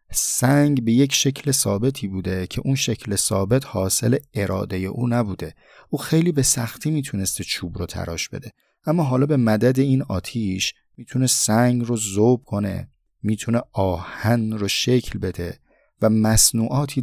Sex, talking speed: male, 145 wpm